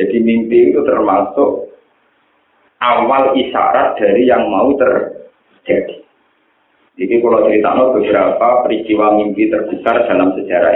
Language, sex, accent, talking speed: Indonesian, male, native, 105 wpm